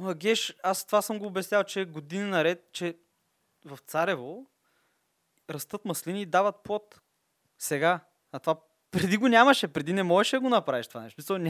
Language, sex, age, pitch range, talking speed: Bulgarian, male, 20-39, 150-200 Hz, 155 wpm